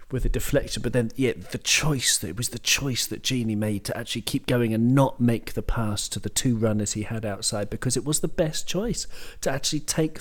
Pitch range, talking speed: 110-145 Hz, 240 wpm